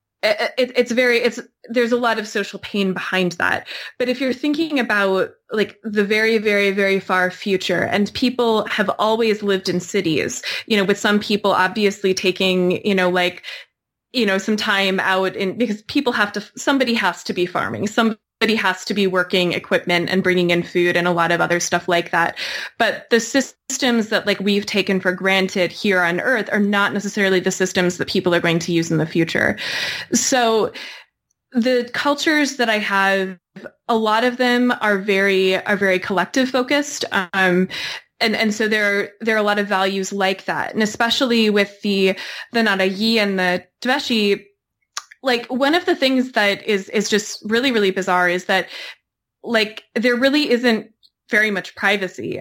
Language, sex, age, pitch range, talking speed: English, female, 20-39, 190-225 Hz, 185 wpm